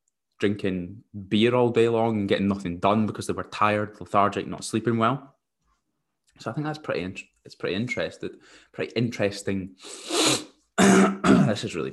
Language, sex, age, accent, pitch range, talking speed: English, male, 20-39, British, 95-110 Hz, 150 wpm